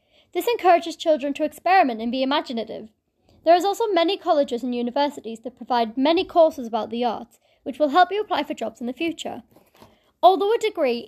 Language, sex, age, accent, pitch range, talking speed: English, female, 30-49, British, 245-360 Hz, 190 wpm